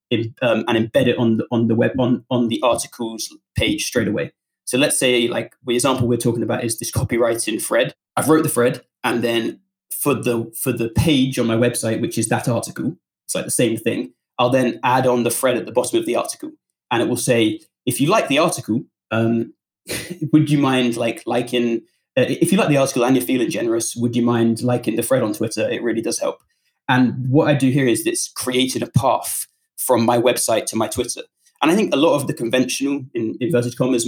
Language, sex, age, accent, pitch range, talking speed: English, male, 20-39, British, 120-140 Hz, 230 wpm